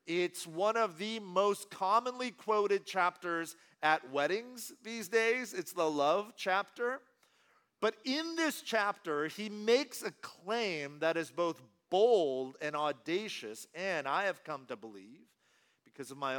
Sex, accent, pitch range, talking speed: male, American, 155-215 Hz, 145 wpm